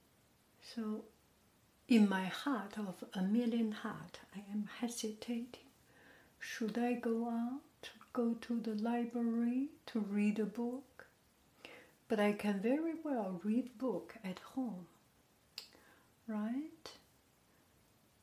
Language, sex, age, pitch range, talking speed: English, female, 60-79, 210-250 Hz, 115 wpm